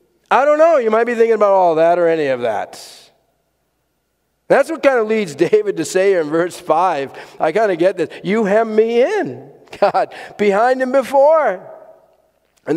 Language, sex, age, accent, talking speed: English, male, 50-69, American, 185 wpm